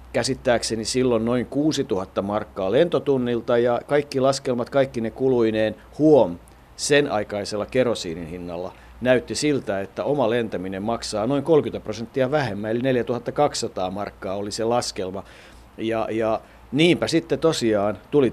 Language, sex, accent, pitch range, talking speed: Finnish, male, native, 105-130 Hz, 130 wpm